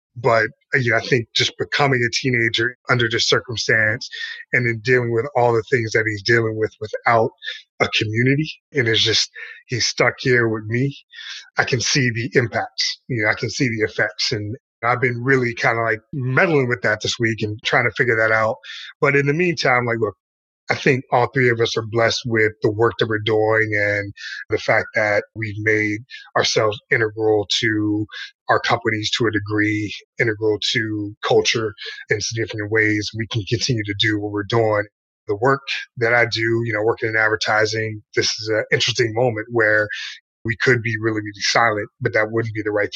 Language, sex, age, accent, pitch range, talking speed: English, male, 30-49, American, 105-120 Hz, 195 wpm